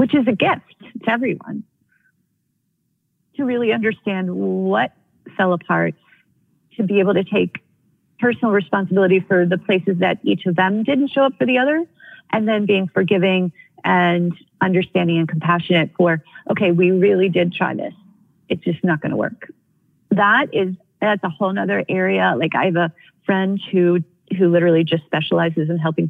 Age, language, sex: 40-59, English, female